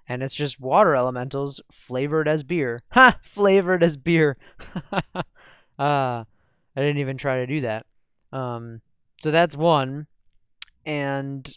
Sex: male